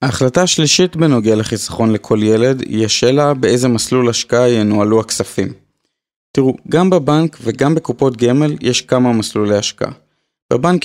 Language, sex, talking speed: Hebrew, male, 135 wpm